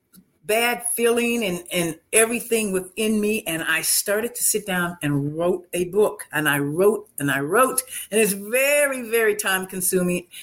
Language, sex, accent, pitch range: English, female, American, 175-230 Hz